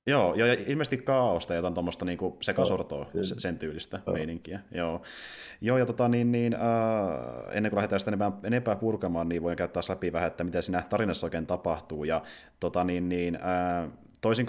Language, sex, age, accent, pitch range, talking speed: Finnish, male, 30-49, native, 85-110 Hz, 165 wpm